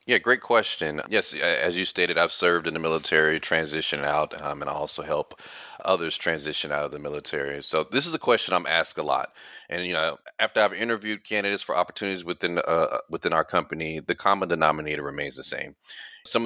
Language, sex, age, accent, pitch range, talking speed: English, male, 30-49, American, 75-90 Hz, 200 wpm